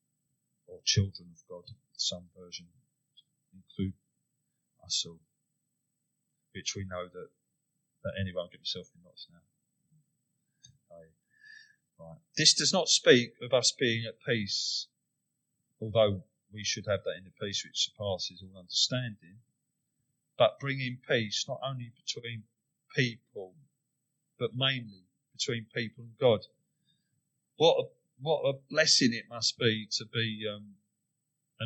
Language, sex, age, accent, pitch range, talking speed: English, male, 30-49, British, 105-135 Hz, 130 wpm